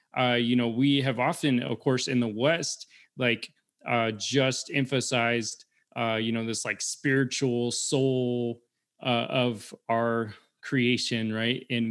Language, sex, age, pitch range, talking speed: English, male, 20-39, 120-135 Hz, 140 wpm